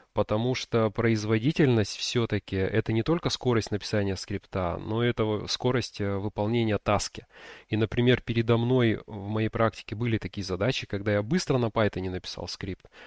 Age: 20-39